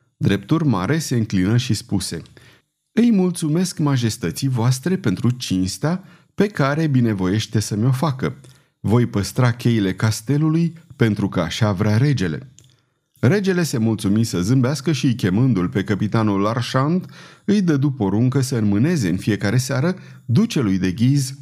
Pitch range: 115-155 Hz